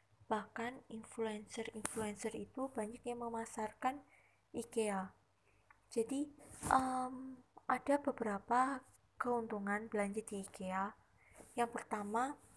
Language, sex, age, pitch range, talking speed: Indonesian, female, 20-39, 205-245 Hz, 75 wpm